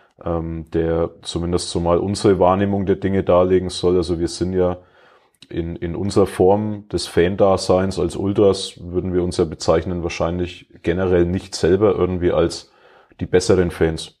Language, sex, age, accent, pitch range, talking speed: German, male, 30-49, German, 85-95 Hz, 150 wpm